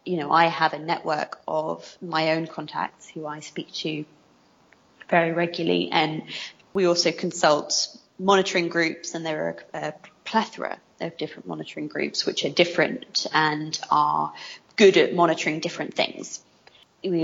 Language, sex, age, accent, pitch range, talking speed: English, female, 20-39, British, 155-200 Hz, 145 wpm